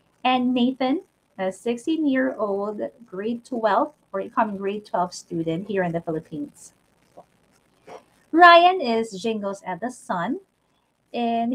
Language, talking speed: English, 115 wpm